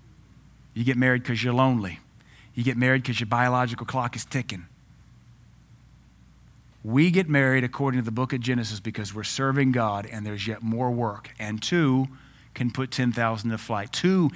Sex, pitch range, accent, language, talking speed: male, 120-155 Hz, American, English, 170 wpm